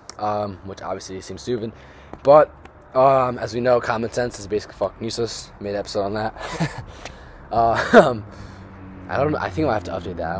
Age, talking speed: 20-39, 200 wpm